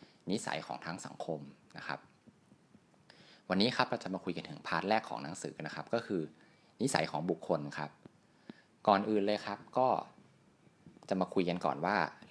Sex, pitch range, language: male, 80-105 Hz, Thai